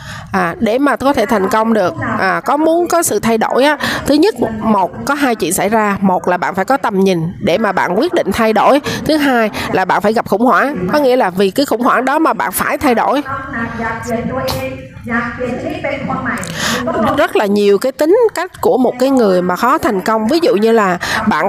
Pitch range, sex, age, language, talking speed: 200-270 Hz, female, 20-39, Vietnamese, 220 wpm